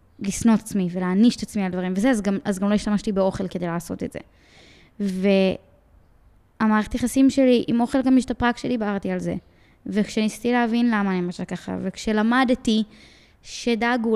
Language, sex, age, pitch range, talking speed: Hebrew, female, 20-39, 195-240 Hz, 160 wpm